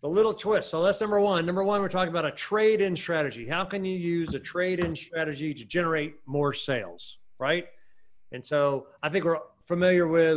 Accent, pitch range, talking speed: American, 135-170 Hz, 195 wpm